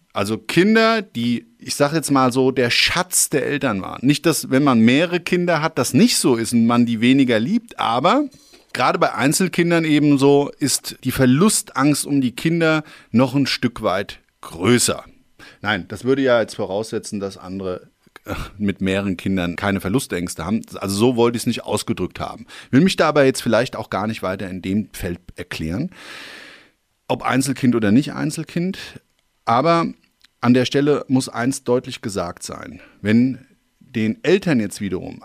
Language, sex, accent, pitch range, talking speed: German, male, German, 100-140 Hz, 170 wpm